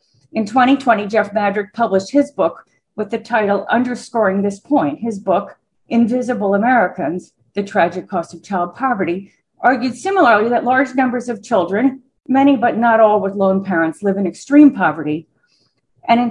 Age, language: 40-59, English